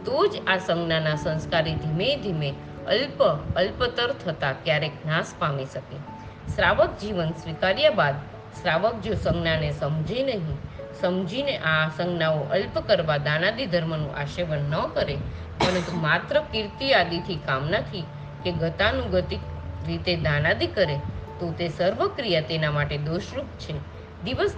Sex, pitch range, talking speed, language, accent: female, 145-180 Hz, 35 wpm, Gujarati, native